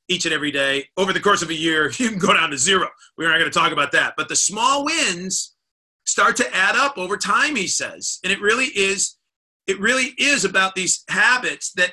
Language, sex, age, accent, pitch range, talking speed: English, male, 40-59, American, 160-210 Hz, 225 wpm